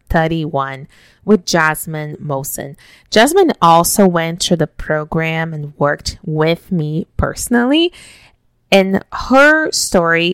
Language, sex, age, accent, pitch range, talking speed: English, female, 20-39, American, 160-195 Hz, 105 wpm